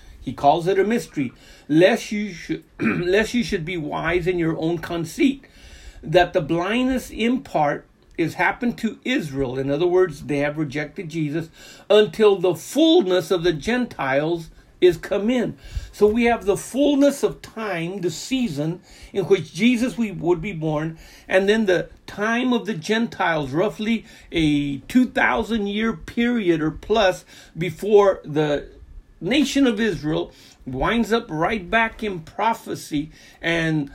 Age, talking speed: 60-79, 150 wpm